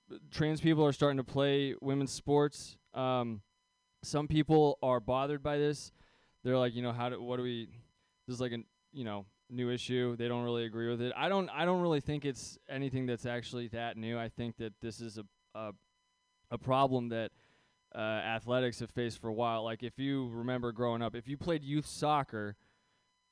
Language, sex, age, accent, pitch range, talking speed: English, male, 20-39, American, 115-140 Hz, 200 wpm